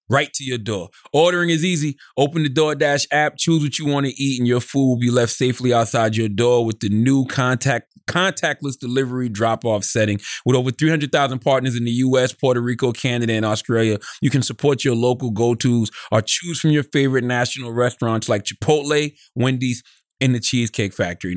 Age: 30-49